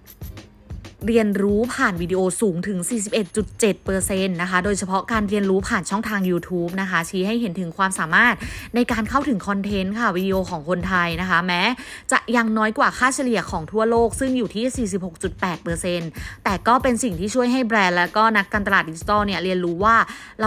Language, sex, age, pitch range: Thai, female, 20-39, 180-225 Hz